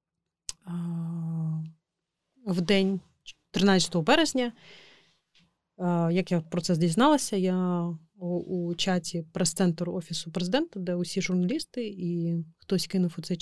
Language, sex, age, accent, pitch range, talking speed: Ukrainian, female, 30-49, native, 170-195 Hz, 105 wpm